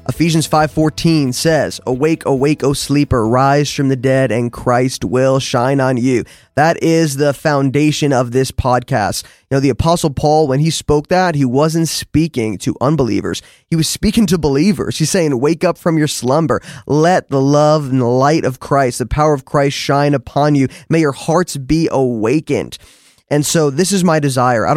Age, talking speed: 20-39, 190 wpm